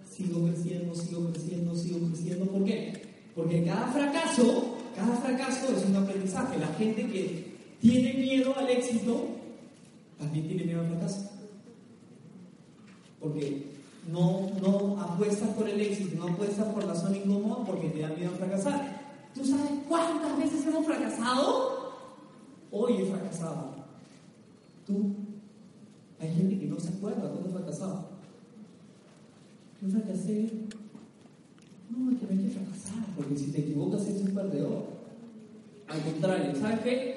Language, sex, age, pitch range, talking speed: Spanish, male, 30-49, 175-230 Hz, 140 wpm